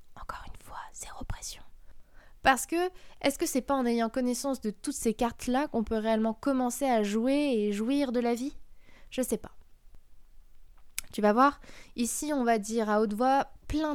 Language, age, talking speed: French, 20-39, 170 wpm